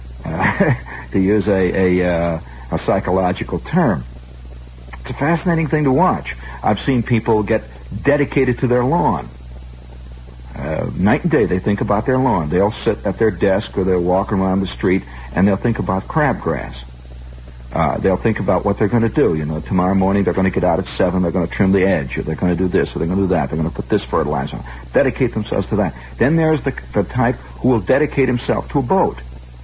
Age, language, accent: 50-69, English, American